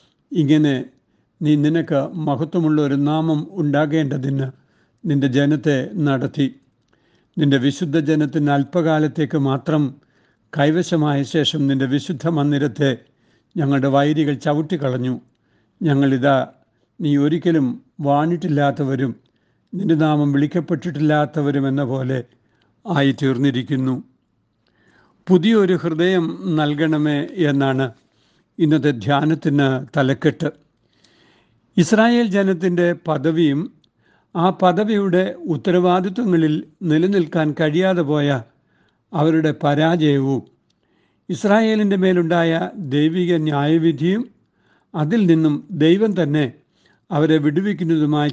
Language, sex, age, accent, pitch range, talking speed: Malayalam, male, 60-79, native, 140-165 Hz, 75 wpm